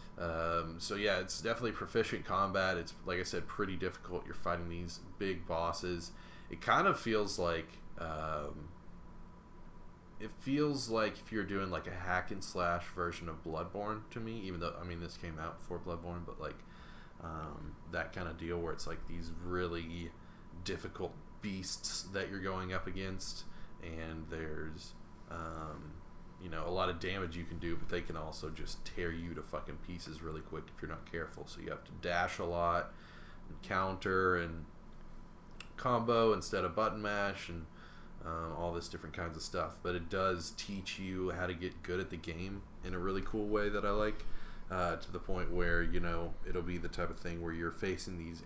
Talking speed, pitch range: 195 wpm, 85-95 Hz